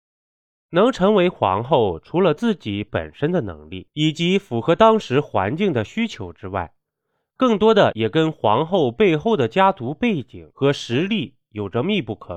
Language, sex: Chinese, male